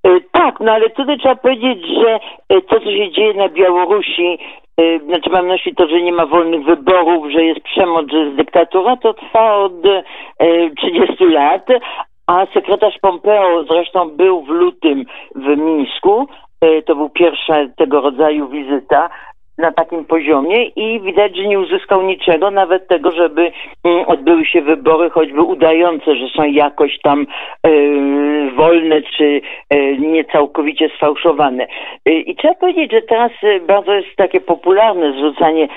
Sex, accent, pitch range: male, native, 155-205 Hz